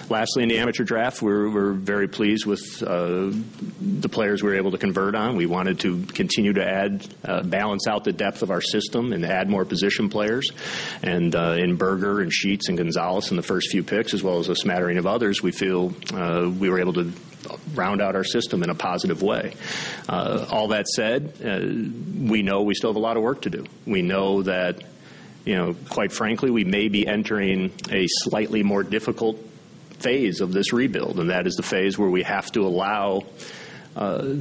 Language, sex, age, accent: English, male, 40-59, American